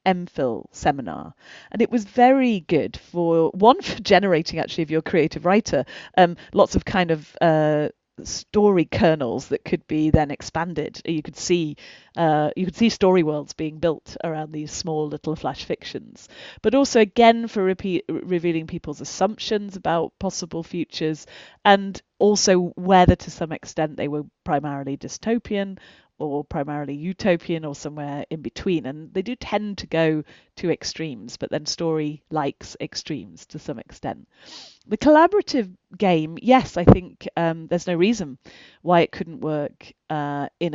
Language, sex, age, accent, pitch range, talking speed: English, female, 30-49, British, 150-190 Hz, 155 wpm